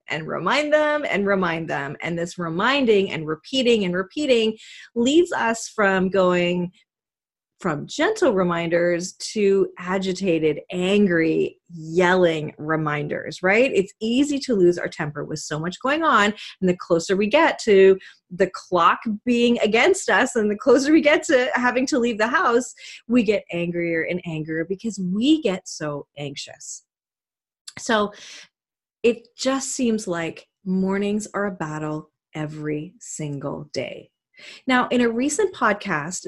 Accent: American